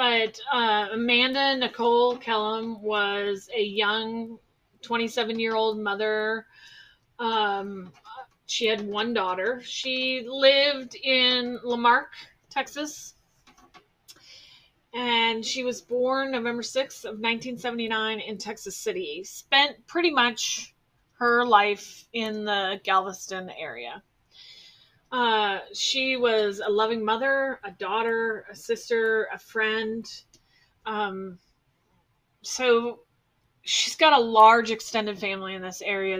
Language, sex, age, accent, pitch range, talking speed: English, female, 30-49, American, 210-245 Hz, 105 wpm